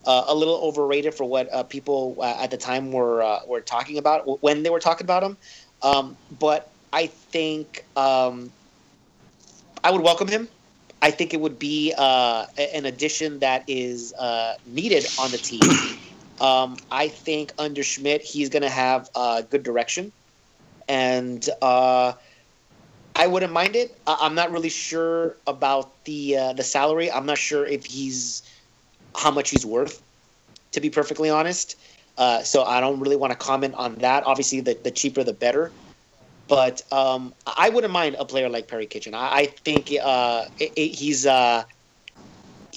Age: 30-49